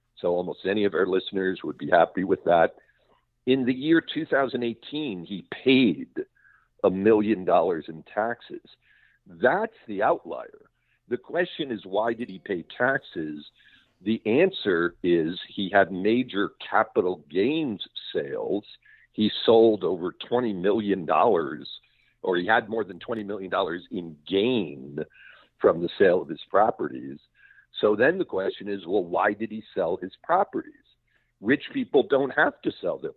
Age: 50-69